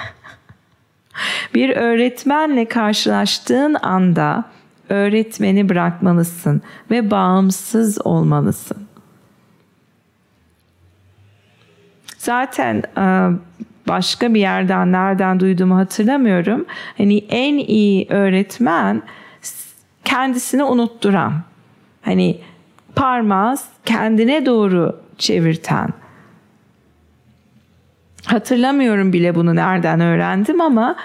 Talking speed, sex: 65 wpm, female